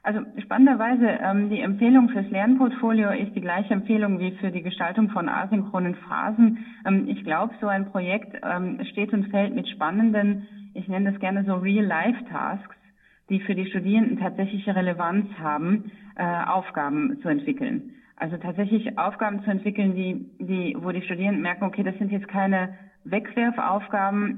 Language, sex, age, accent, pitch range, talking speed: German, female, 30-49, German, 180-215 Hz, 160 wpm